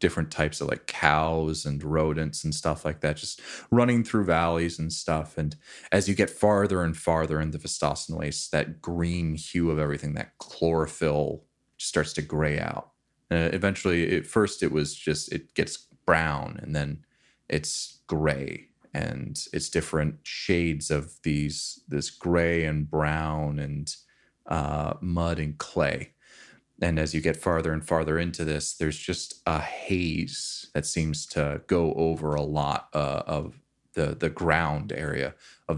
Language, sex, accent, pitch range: English, male, American, 75-85 Hz